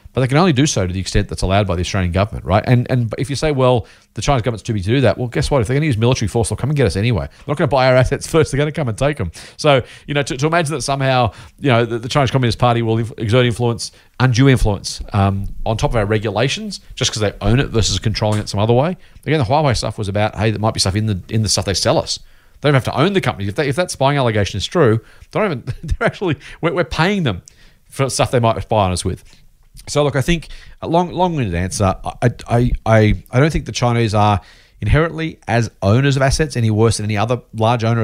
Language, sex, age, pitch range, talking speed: English, male, 40-59, 105-135 Hz, 280 wpm